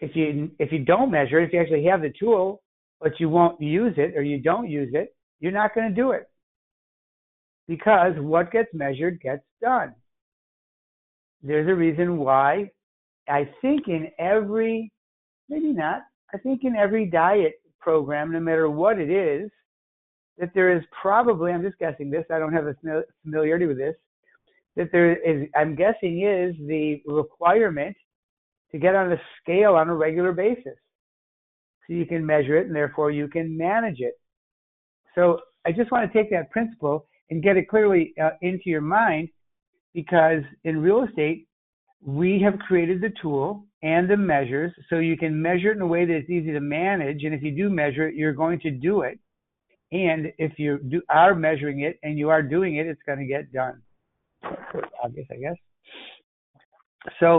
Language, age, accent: English, 60-79, American